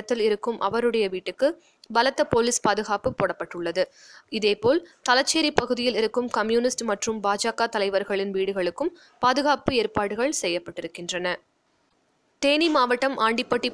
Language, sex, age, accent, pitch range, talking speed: Tamil, female, 20-39, native, 200-255 Hz, 95 wpm